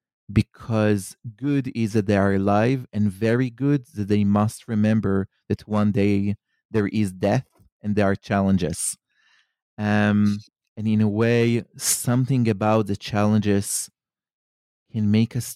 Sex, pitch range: male, 105-120 Hz